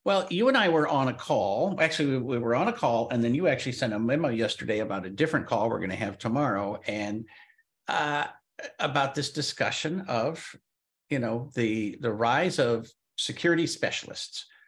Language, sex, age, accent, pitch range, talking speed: English, male, 50-69, American, 115-150 Hz, 190 wpm